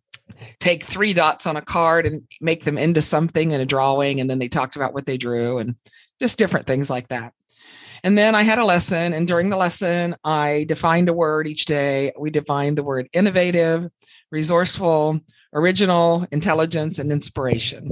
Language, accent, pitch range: English, American, 135-170 Hz